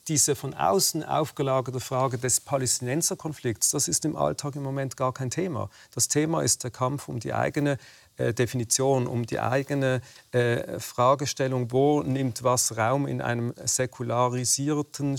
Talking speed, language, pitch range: 140 wpm, German, 125-140 Hz